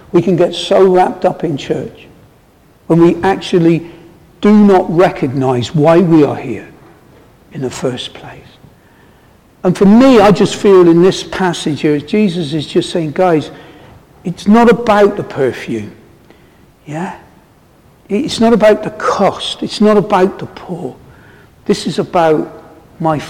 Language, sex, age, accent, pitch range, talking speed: English, male, 60-79, British, 150-205 Hz, 145 wpm